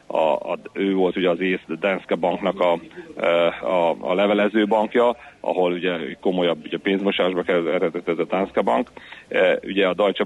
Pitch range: 90-100 Hz